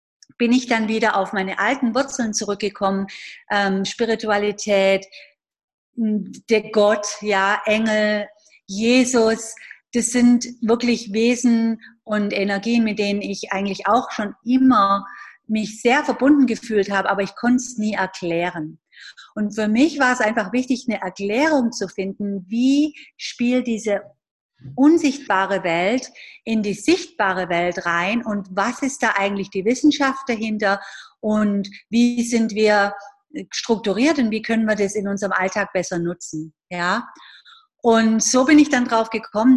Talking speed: 140 wpm